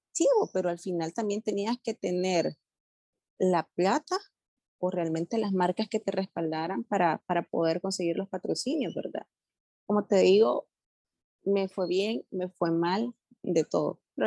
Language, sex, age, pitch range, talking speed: Spanish, female, 30-49, 175-215 Hz, 145 wpm